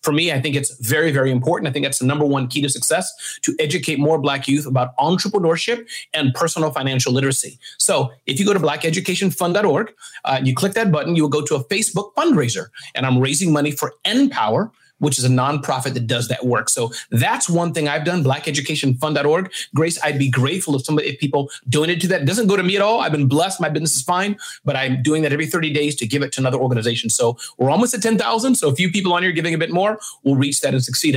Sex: male